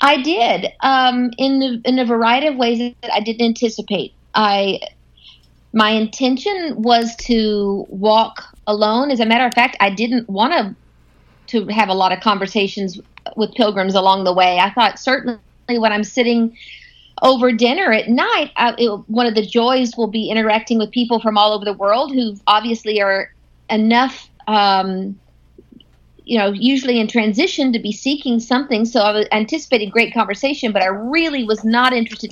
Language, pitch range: English, 210-255 Hz